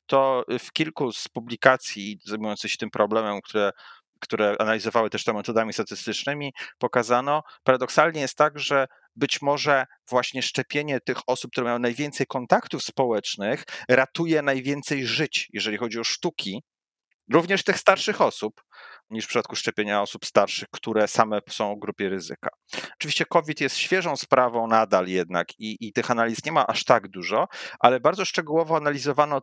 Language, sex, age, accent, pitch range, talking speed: Polish, male, 40-59, native, 110-140 Hz, 155 wpm